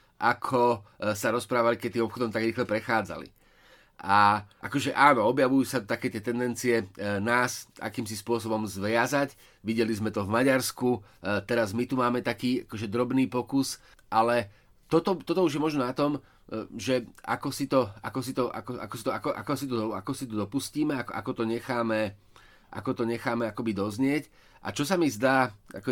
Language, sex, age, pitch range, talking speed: Slovak, male, 30-49, 115-135 Hz, 140 wpm